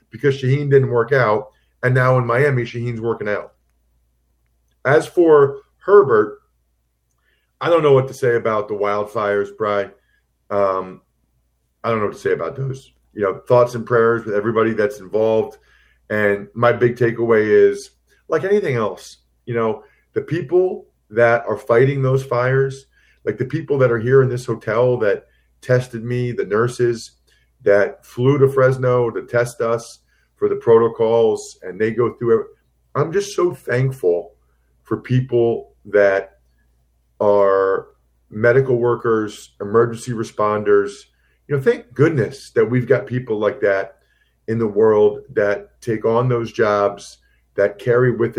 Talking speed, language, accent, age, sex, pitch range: 150 wpm, English, American, 40-59, male, 100-135 Hz